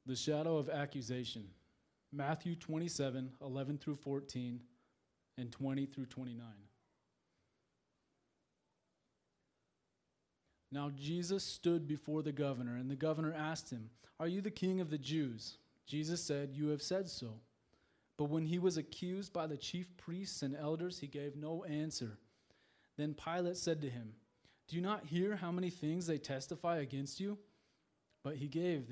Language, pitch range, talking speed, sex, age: English, 135-170 Hz, 145 wpm, male, 20-39